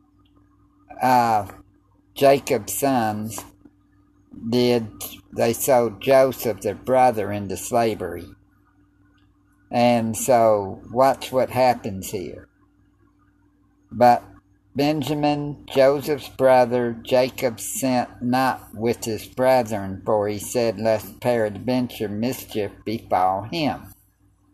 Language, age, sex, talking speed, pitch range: English, 50-69, male, 85 wpm, 95-130 Hz